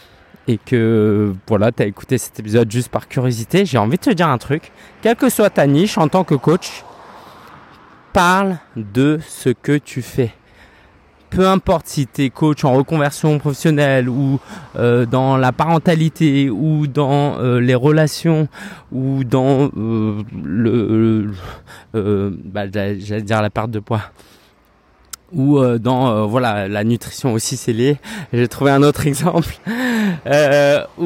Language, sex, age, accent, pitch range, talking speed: French, male, 20-39, French, 115-150 Hz, 155 wpm